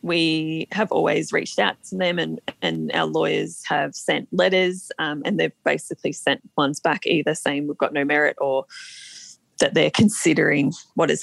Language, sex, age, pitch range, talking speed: English, female, 20-39, 160-215 Hz, 175 wpm